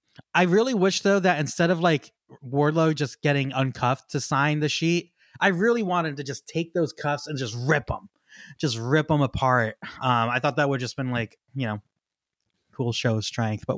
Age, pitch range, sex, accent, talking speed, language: 20-39, 125-165 Hz, male, American, 205 wpm, English